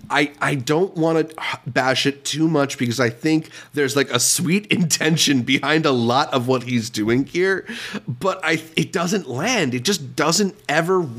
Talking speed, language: 180 wpm, English